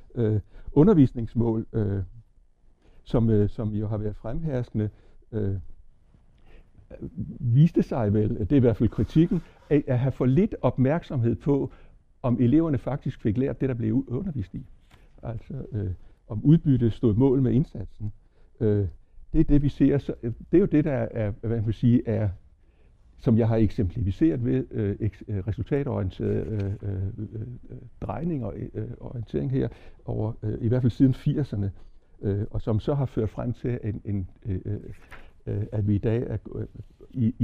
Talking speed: 165 wpm